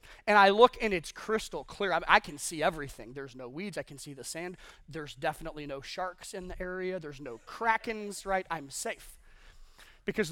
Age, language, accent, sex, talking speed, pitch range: 30-49, English, American, male, 190 wpm, 155-195 Hz